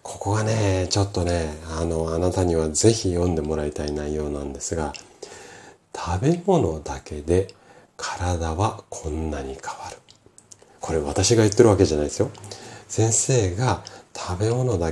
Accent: native